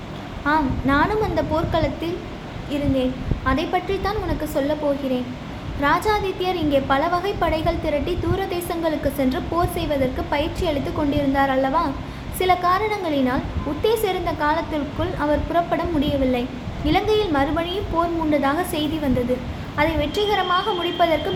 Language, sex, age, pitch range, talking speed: Tamil, female, 20-39, 285-350 Hz, 115 wpm